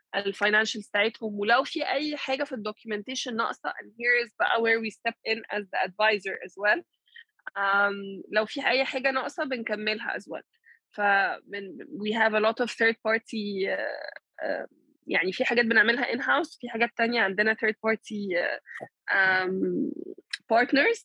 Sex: female